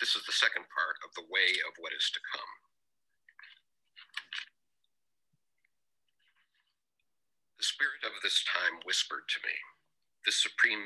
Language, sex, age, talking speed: English, male, 50-69, 125 wpm